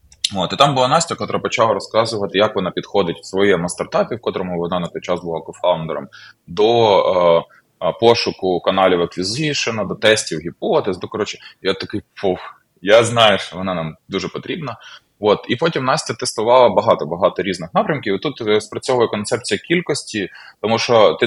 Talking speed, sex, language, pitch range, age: 155 wpm, male, Ukrainian, 90-115 Hz, 20-39